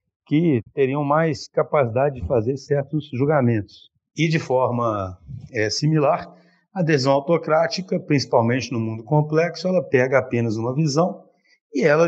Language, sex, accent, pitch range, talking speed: Portuguese, male, Brazilian, 120-160 Hz, 135 wpm